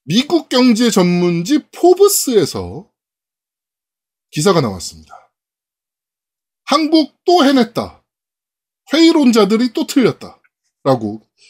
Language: Korean